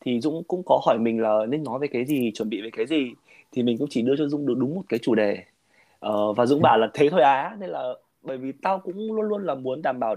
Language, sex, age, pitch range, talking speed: Vietnamese, male, 20-39, 120-180 Hz, 290 wpm